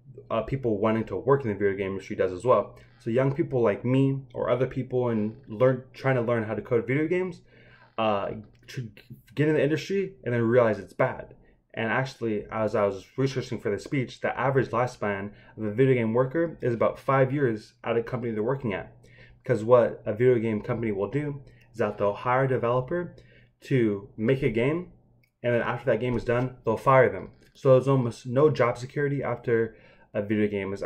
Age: 20-39